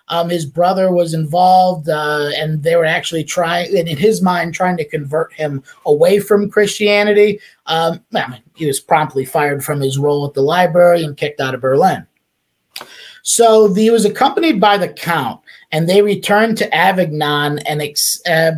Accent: American